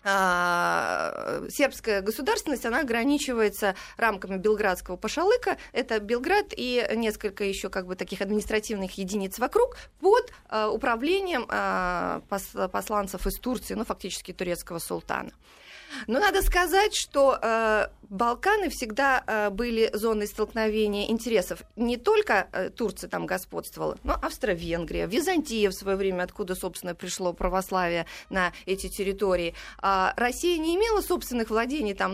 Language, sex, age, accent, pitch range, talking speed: Russian, female, 30-49, native, 190-270 Hz, 115 wpm